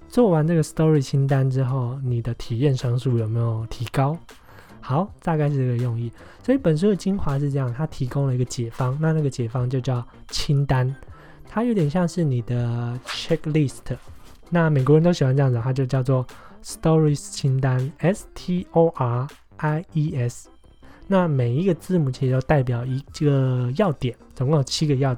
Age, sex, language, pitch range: 20-39, male, Chinese, 125-155 Hz